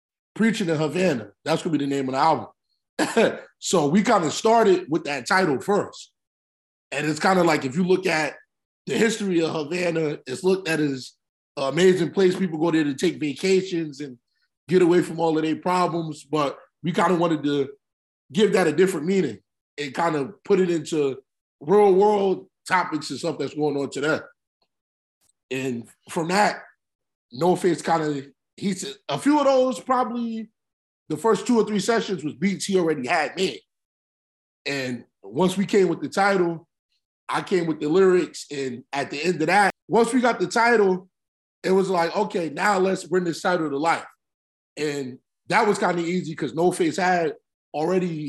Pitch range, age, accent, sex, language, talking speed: 145-190 Hz, 20-39, American, male, English, 190 wpm